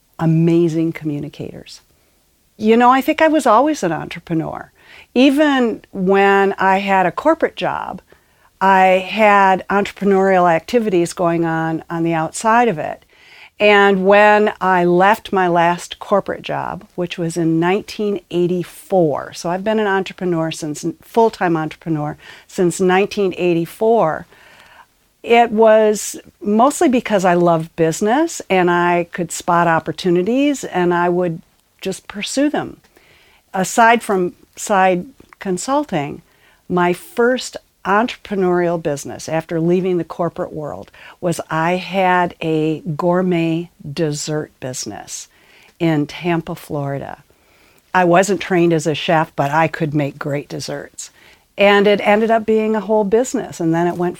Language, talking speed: English, 130 wpm